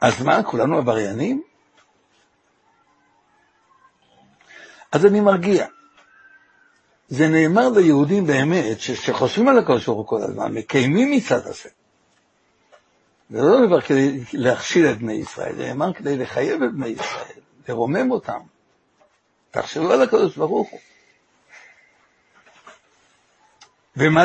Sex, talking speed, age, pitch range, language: male, 110 wpm, 60-79, 140-225 Hz, Hebrew